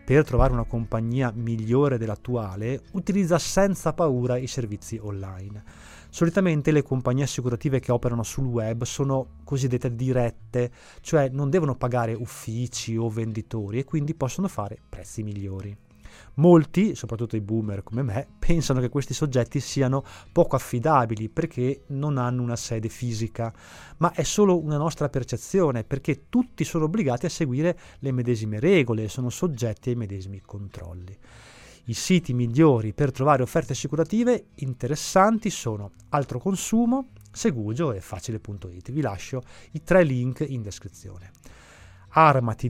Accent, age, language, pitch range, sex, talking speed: native, 30-49, Italian, 110-150 Hz, male, 140 wpm